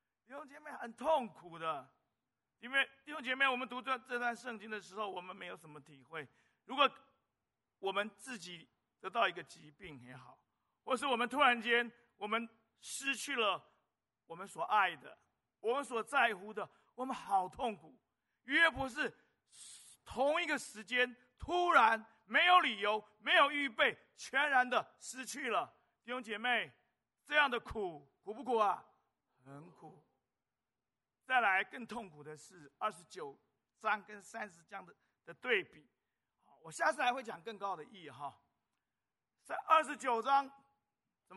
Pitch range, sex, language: 205-275 Hz, male, Chinese